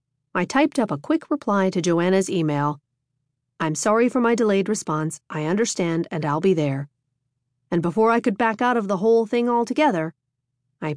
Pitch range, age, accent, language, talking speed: 145-230 Hz, 40-59, American, English, 180 wpm